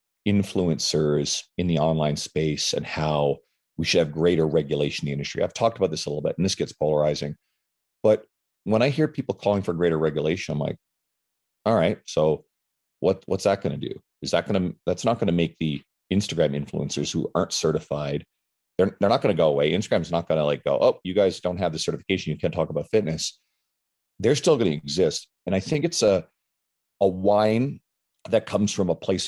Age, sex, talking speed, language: 40-59, male, 210 wpm, English